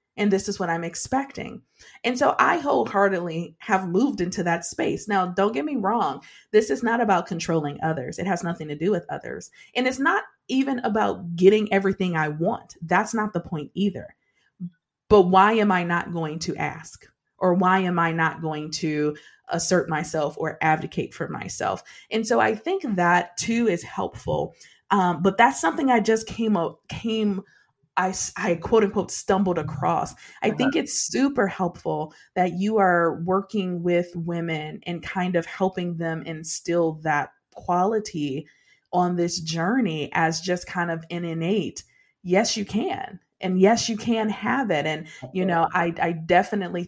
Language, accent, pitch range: English, American, 165-200 Hz